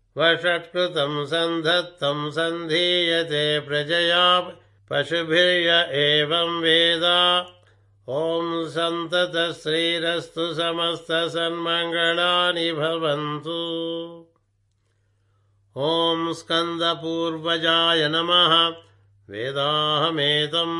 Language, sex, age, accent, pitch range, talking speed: Telugu, male, 60-79, native, 150-170 Hz, 40 wpm